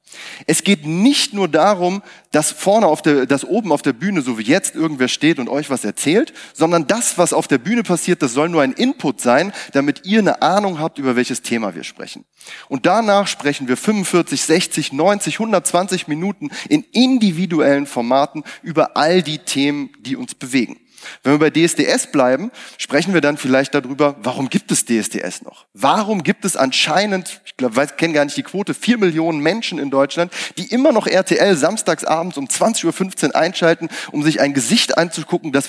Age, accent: 30-49, German